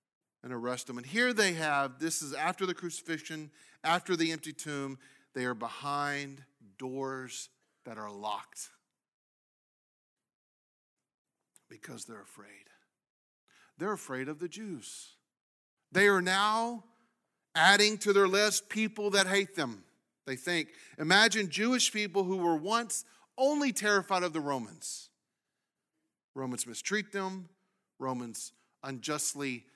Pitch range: 130-200 Hz